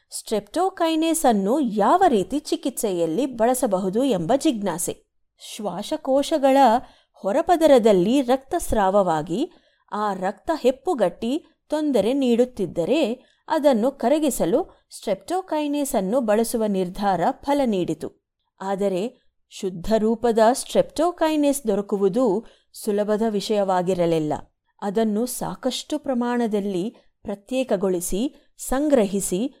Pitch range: 205-280 Hz